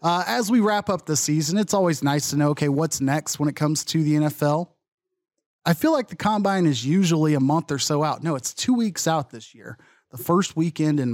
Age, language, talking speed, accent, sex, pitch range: 30-49, English, 235 wpm, American, male, 135-175 Hz